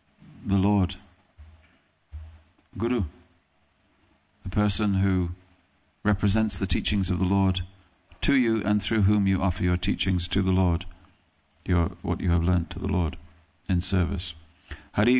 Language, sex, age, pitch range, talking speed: English, male, 50-69, 90-100 Hz, 140 wpm